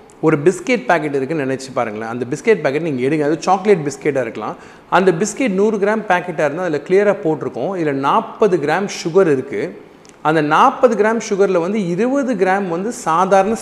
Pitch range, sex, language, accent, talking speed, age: 150-210 Hz, male, Tamil, native, 170 wpm, 30-49